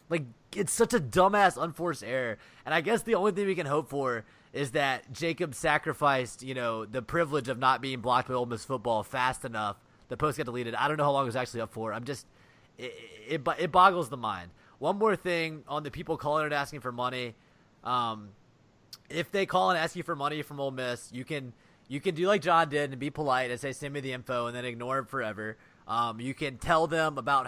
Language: English